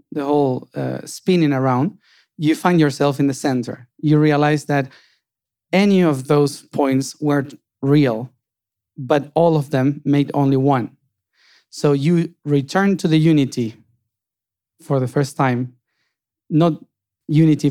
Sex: male